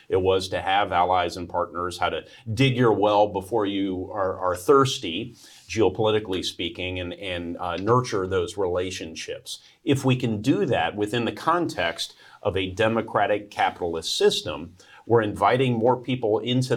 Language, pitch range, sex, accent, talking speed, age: English, 90-125 Hz, male, American, 155 wpm, 40-59